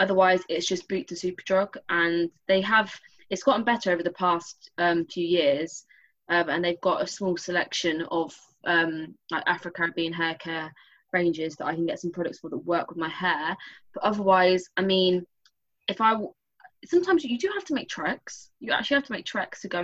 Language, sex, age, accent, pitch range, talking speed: English, female, 20-39, British, 175-215 Hz, 205 wpm